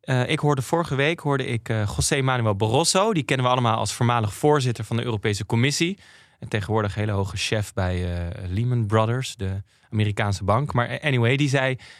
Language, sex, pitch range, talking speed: Dutch, male, 105-130 Hz, 190 wpm